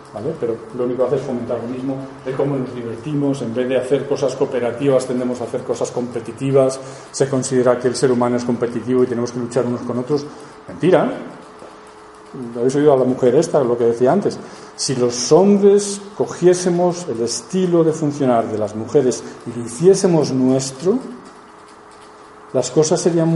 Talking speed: 175 wpm